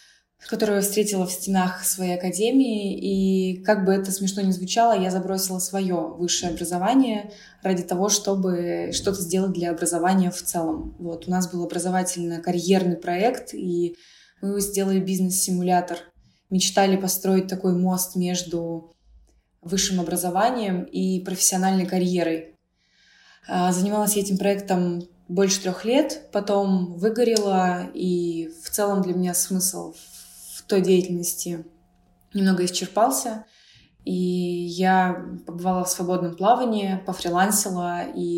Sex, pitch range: female, 175-195 Hz